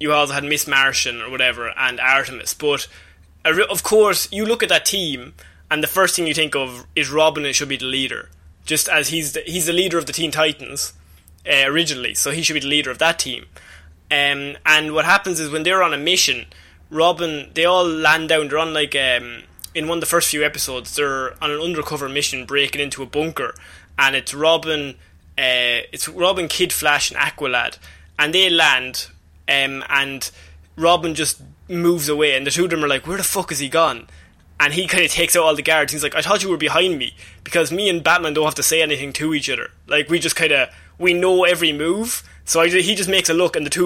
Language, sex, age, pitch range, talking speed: English, male, 20-39, 135-165 Hz, 230 wpm